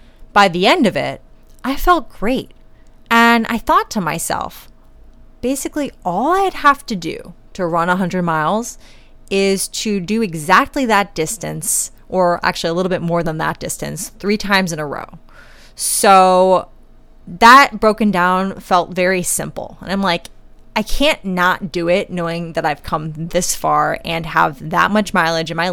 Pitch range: 165-215 Hz